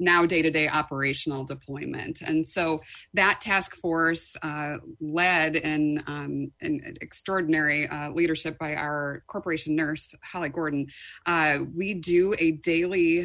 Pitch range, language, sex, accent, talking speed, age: 150-165 Hz, English, female, American, 125 wpm, 30-49